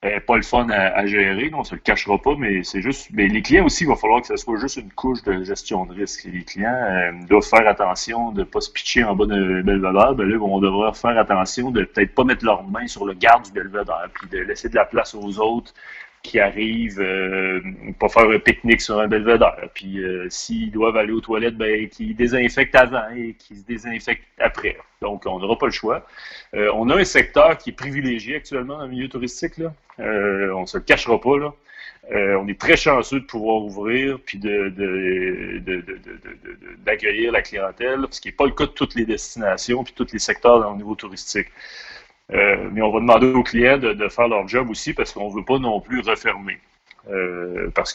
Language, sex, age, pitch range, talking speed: French, male, 30-49, 100-125 Hz, 235 wpm